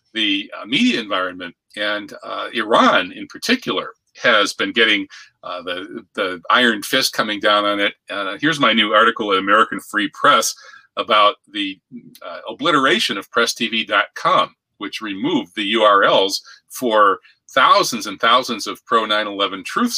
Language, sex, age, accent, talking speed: English, male, 40-59, American, 140 wpm